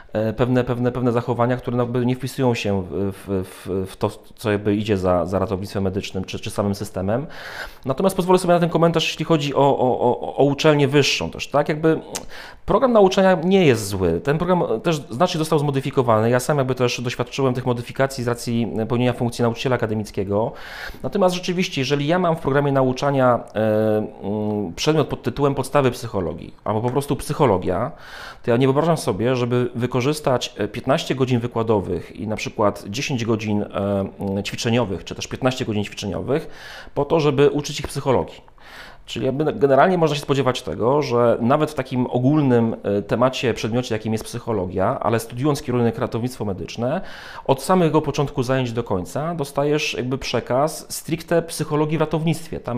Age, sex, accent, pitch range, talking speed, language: 30-49, male, native, 115-145 Hz, 165 wpm, Polish